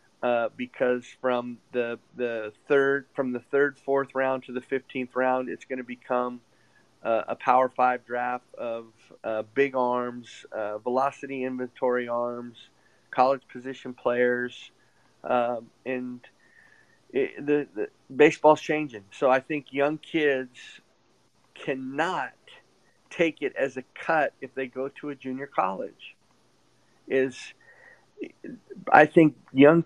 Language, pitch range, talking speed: English, 125-145 Hz, 130 wpm